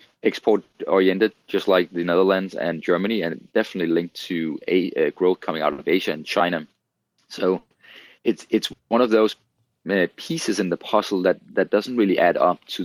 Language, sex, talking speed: English, male, 180 wpm